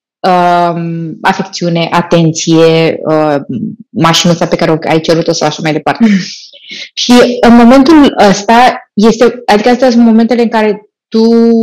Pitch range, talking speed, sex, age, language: 180-230 Hz, 125 wpm, female, 20-39, Romanian